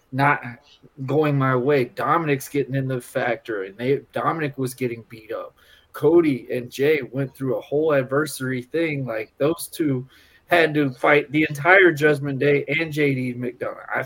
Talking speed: 165 wpm